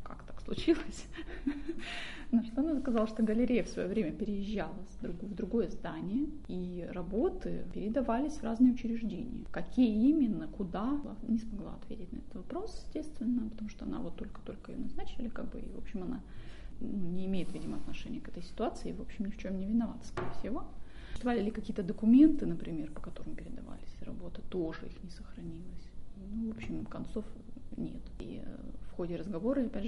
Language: Russian